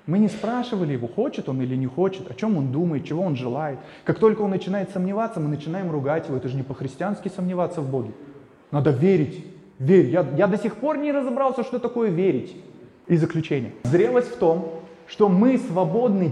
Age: 20-39